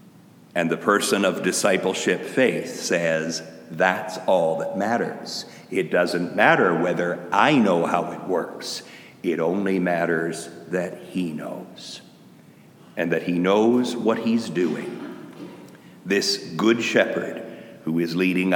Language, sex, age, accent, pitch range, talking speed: English, male, 60-79, American, 85-115 Hz, 125 wpm